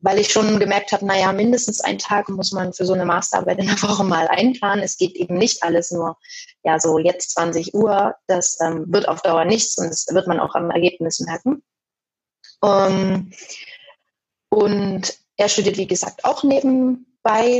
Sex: female